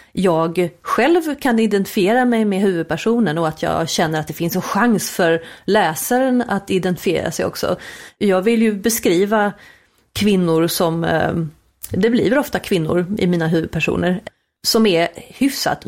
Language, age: Swedish, 30-49